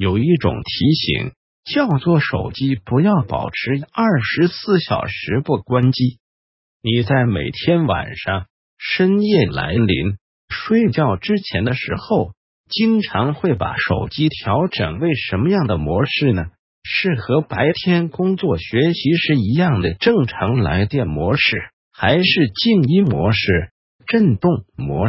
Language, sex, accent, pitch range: Chinese, male, native, 100-170 Hz